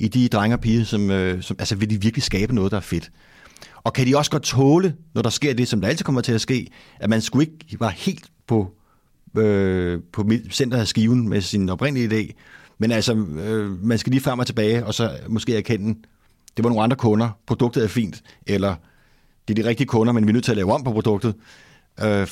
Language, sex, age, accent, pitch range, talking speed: Danish, male, 30-49, native, 100-125 Hz, 235 wpm